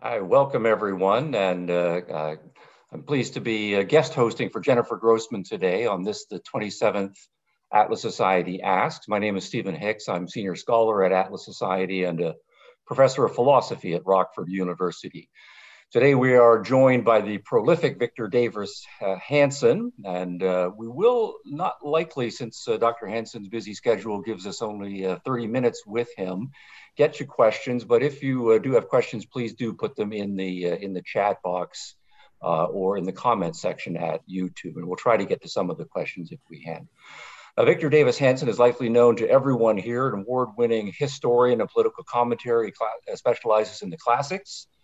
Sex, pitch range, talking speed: male, 100-130 Hz, 185 wpm